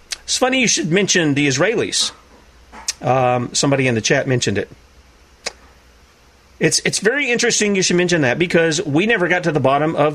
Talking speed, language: 175 wpm, English